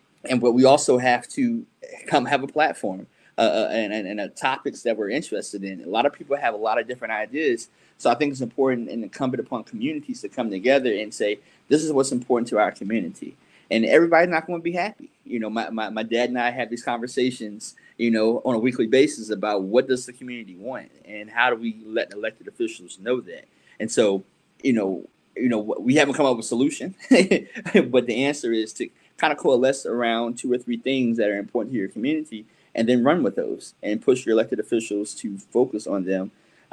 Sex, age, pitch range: male, 20-39, 110-140 Hz